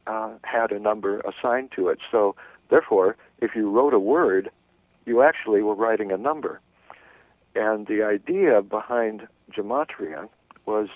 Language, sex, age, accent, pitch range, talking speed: English, male, 60-79, American, 95-130 Hz, 140 wpm